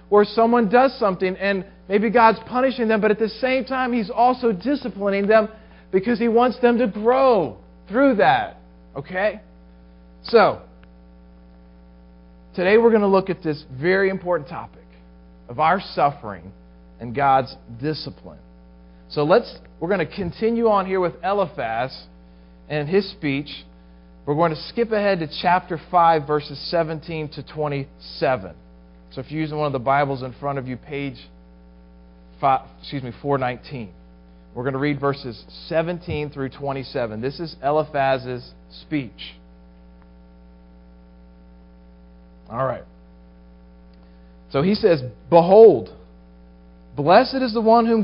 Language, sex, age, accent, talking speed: English, male, 40-59, American, 130 wpm